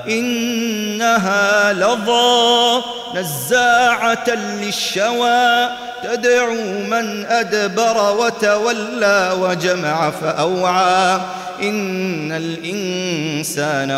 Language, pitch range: Arabic, 150-200 Hz